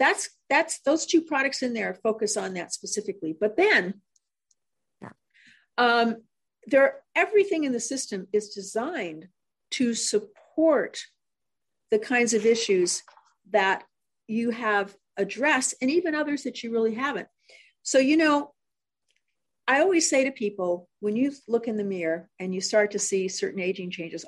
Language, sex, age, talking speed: English, female, 50-69, 150 wpm